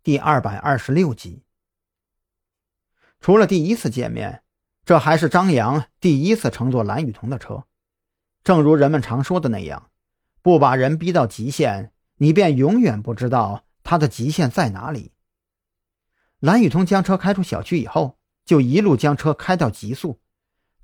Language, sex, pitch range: Chinese, male, 105-165 Hz